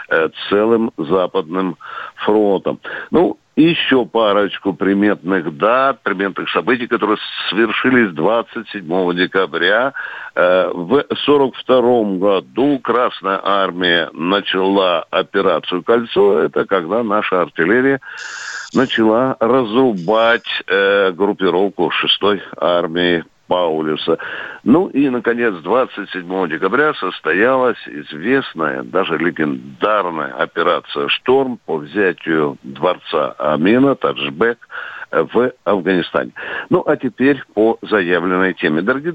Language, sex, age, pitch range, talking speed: Russian, male, 60-79, 95-135 Hz, 85 wpm